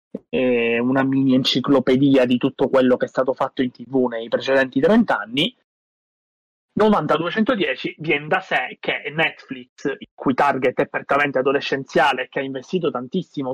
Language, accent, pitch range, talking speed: Italian, native, 130-155 Hz, 140 wpm